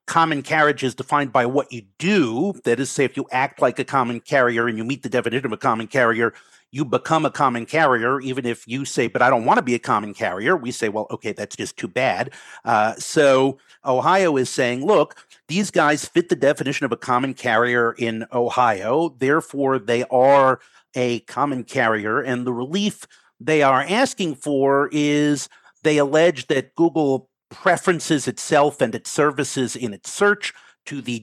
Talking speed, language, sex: 190 wpm, English, male